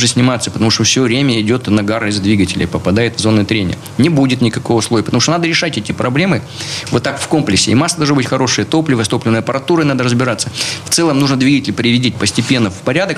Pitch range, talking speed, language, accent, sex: 115-150 Hz, 210 wpm, Russian, native, male